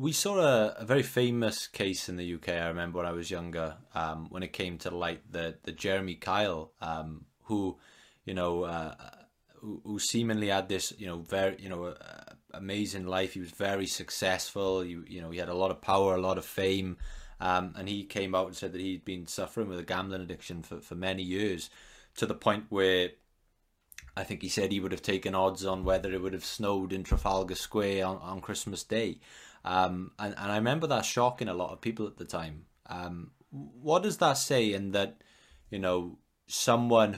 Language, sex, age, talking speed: English, male, 20-39, 210 wpm